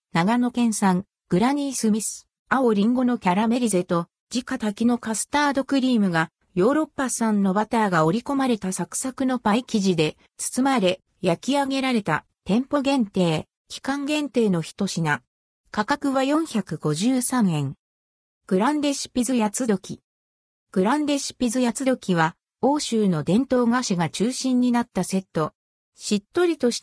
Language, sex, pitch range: Japanese, female, 180-260 Hz